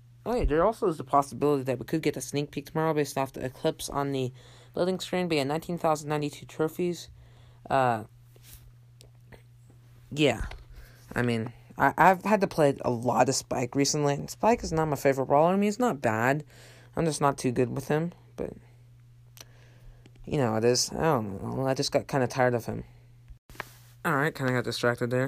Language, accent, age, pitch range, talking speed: English, American, 20-39, 120-145 Hz, 205 wpm